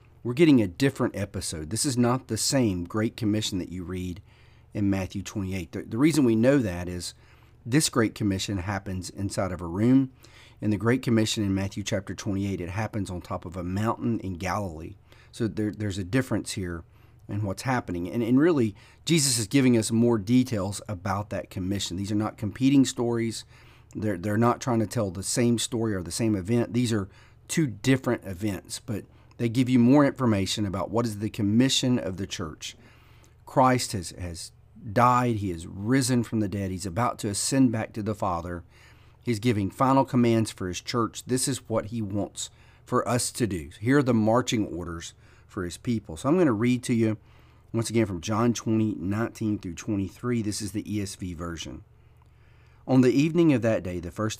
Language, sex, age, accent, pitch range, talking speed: English, male, 40-59, American, 100-120 Hz, 195 wpm